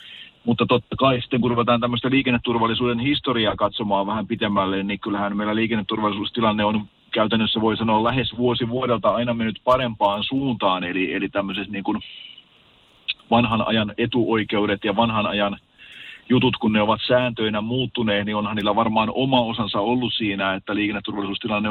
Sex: male